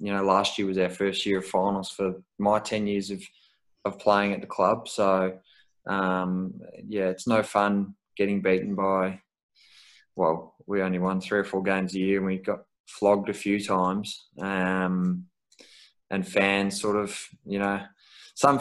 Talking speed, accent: 175 wpm, Australian